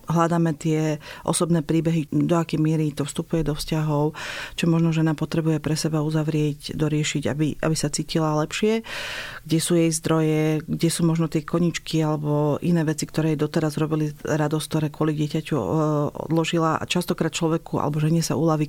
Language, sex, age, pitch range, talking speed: Slovak, female, 40-59, 155-165 Hz, 165 wpm